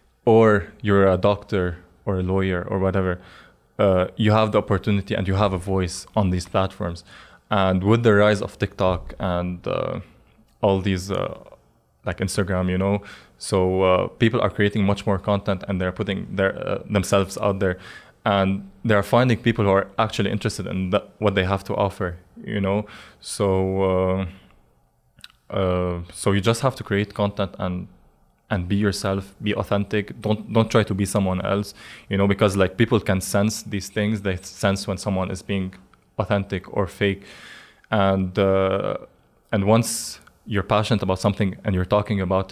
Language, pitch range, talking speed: English, 95-105 Hz, 170 wpm